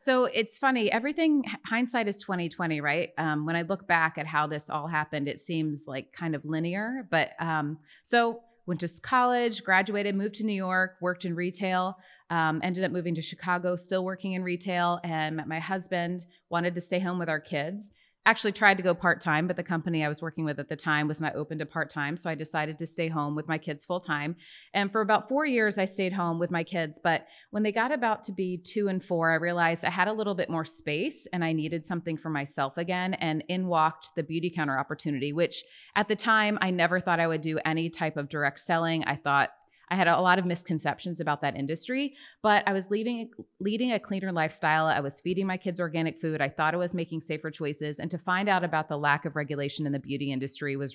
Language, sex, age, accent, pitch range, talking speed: English, female, 30-49, American, 155-190 Hz, 230 wpm